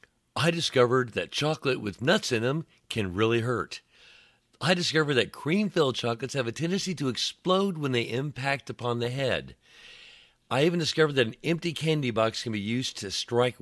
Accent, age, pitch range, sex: American, 50-69, 100-135 Hz, male